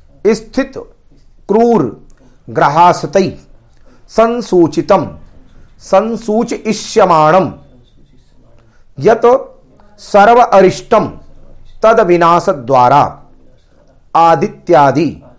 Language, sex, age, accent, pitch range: Hindi, male, 50-69, native, 165-220 Hz